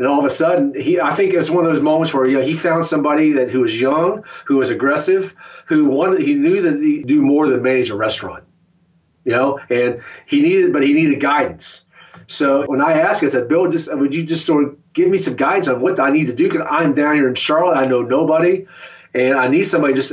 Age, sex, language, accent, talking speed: 40-59, male, English, American, 250 wpm